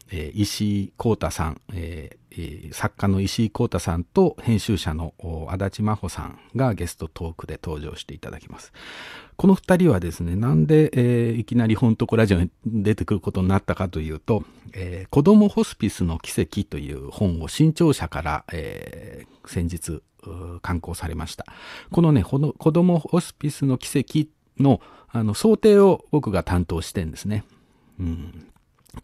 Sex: male